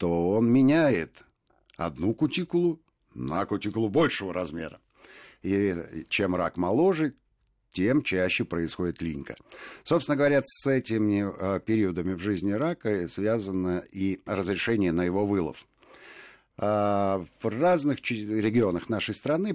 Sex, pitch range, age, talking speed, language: male, 90-115 Hz, 50-69, 110 wpm, Russian